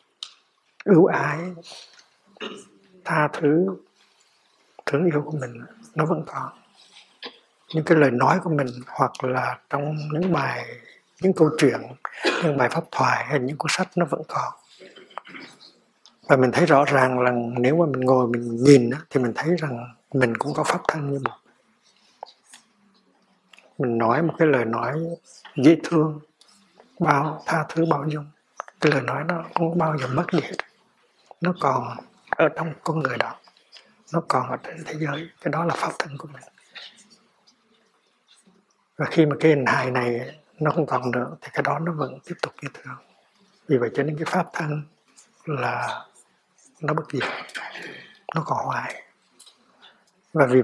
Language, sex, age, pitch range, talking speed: Vietnamese, male, 60-79, 130-165 Hz, 160 wpm